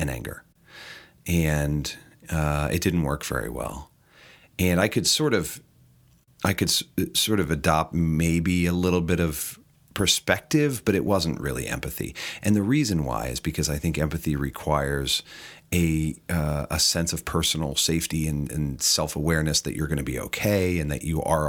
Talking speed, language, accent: 170 wpm, English, American